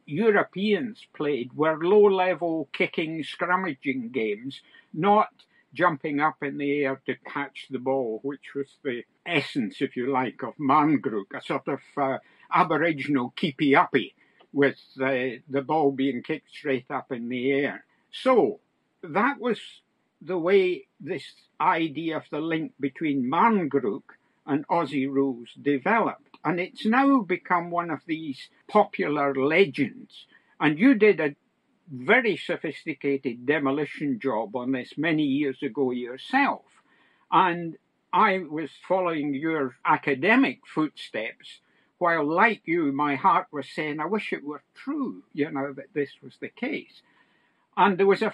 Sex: male